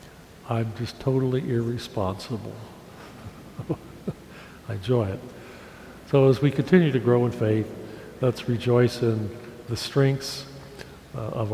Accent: American